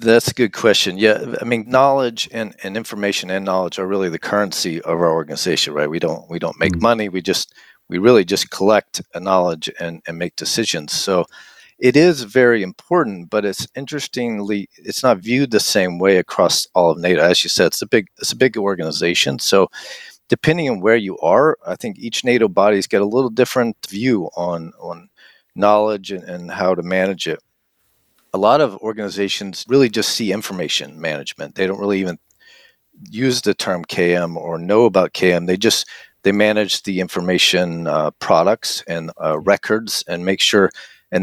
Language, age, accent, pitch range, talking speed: English, 40-59, American, 90-115 Hz, 185 wpm